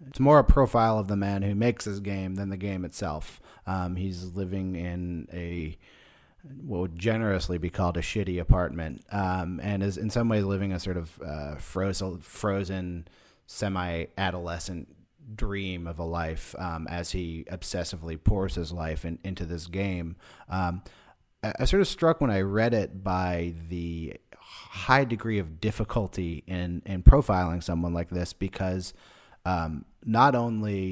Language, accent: English, American